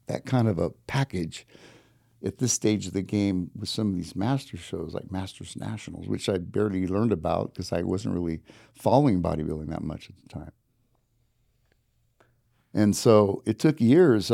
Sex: male